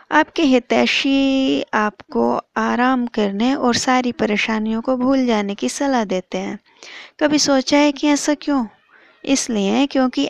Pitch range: 210-270 Hz